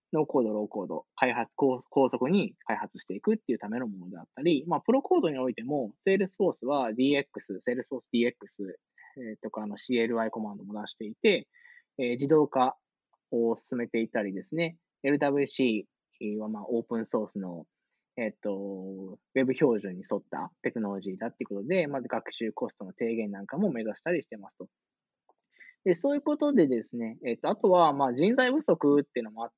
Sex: male